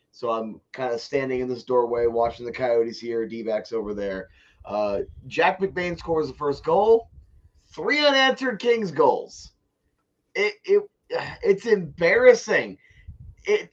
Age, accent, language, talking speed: 20-39, American, English, 135 wpm